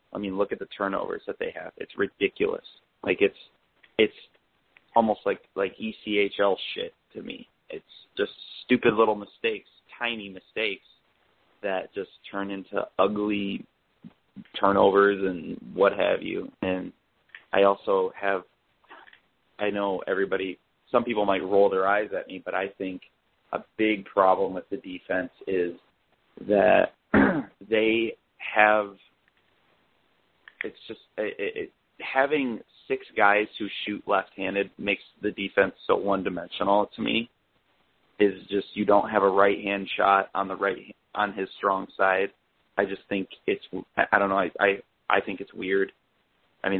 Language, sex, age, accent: English, male, 30-49, American